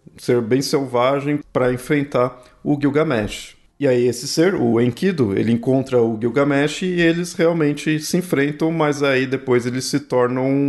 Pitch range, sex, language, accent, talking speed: 115-150 Hz, male, Portuguese, Brazilian, 155 wpm